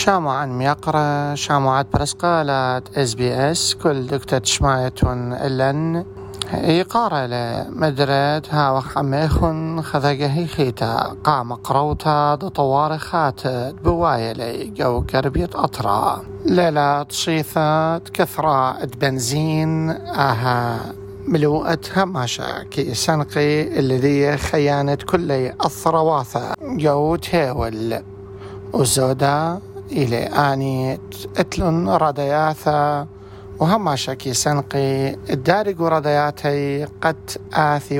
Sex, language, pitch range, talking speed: male, English, 130-155 Hz, 80 wpm